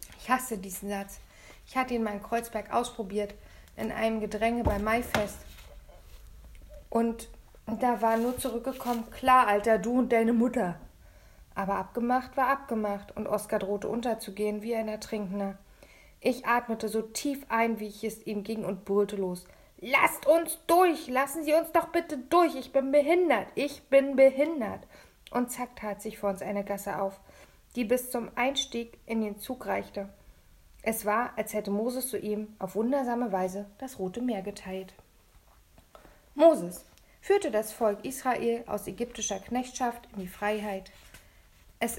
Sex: female